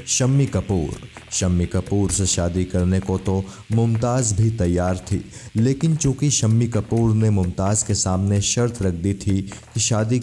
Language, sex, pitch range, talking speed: Hindi, male, 90-110 Hz, 160 wpm